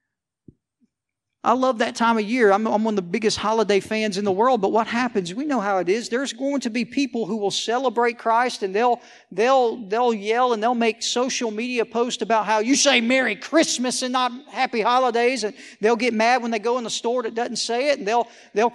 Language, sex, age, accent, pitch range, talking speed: English, male, 50-69, American, 225-260 Hz, 230 wpm